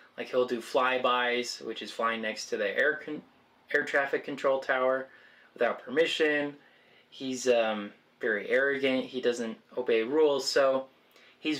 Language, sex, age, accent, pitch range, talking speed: English, male, 20-39, American, 120-145 Hz, 145 wpm